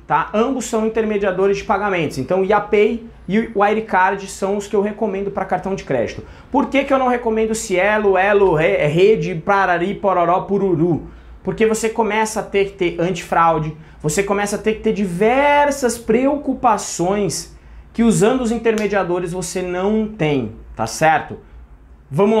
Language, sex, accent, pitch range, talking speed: Portuguese, male, Brazilian, 175-215 Hz, 155 wpm